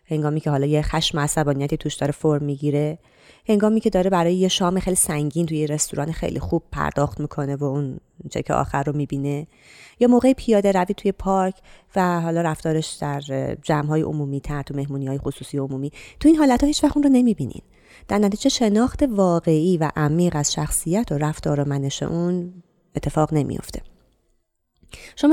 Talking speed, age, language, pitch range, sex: 175 wpm, 30-49, Persian, 145-200 Hz, female